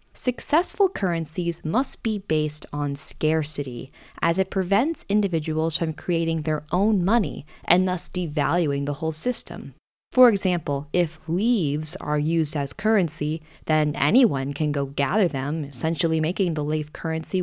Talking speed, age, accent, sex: 140 wpm, 20-39, American, female